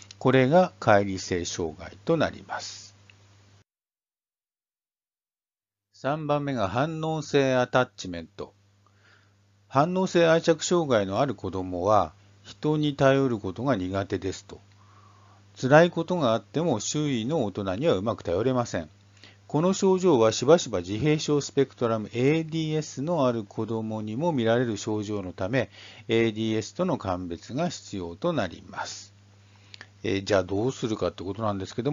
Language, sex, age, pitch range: Japanese, male, 50-69, 100-140 Hz